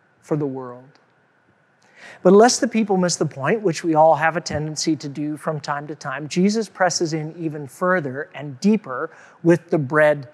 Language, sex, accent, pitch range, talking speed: English, male, American, 150-195 Hz, 185 wpm